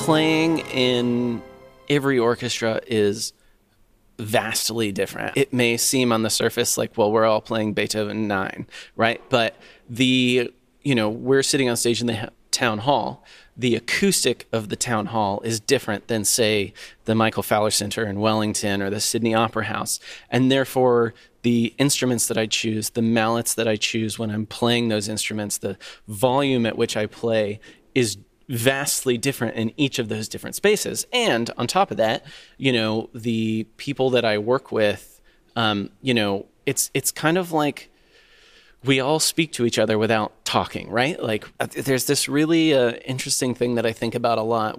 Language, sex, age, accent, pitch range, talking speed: English, male, 30-49, American, 110-130 Hz, 175 wpm